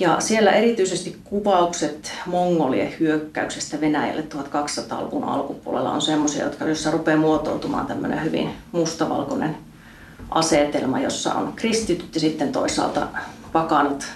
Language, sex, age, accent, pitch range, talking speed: Finnish, female, 30-49, native, 155-185 Hz, 100 wpm